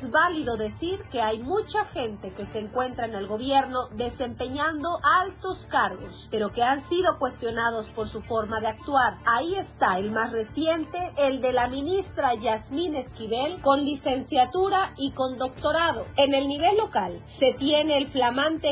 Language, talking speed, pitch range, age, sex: Spanish, 160 wpm, 235-320 Hz, 30-49, female